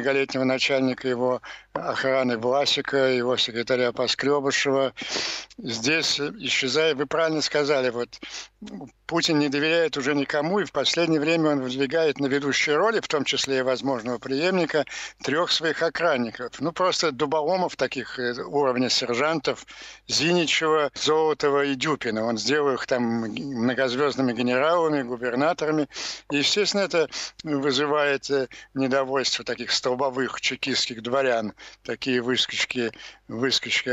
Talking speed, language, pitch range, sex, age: 115 wpm, Ukrainian, 125-155 Hz, male, 60-79